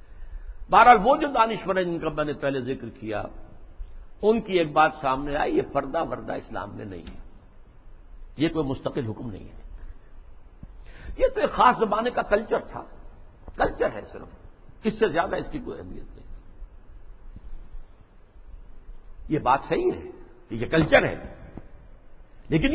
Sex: male